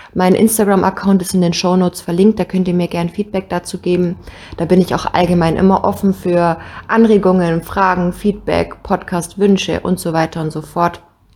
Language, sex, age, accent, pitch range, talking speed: German, female, 20-39, German, 155-185 Hz, 175 wpm